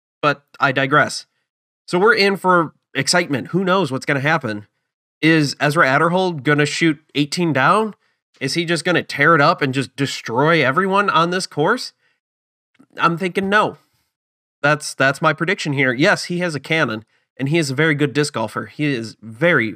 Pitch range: 135-175 Hz